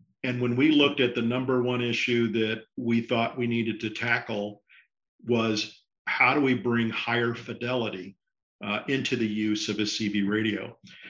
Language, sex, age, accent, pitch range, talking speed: English, male, 50-69, American, 110-125 Hz, 170 wpm